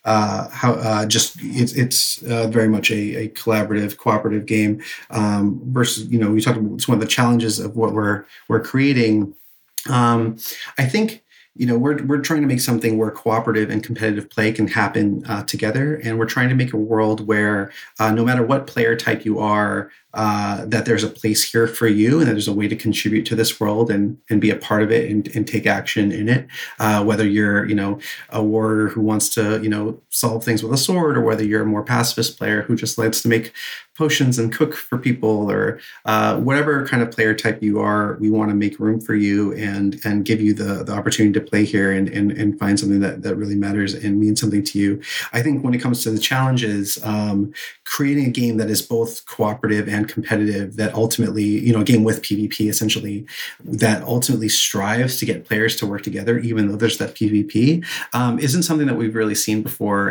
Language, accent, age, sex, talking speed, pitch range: English, American, 30-49, male, 220 wpm, 105-120 Hz